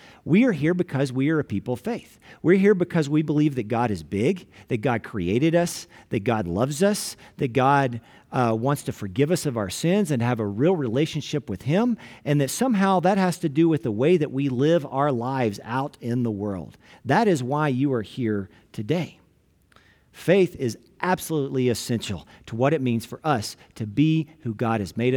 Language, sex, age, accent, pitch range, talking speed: English, male, 40-59, American, 115-165 Hz, 205 wpm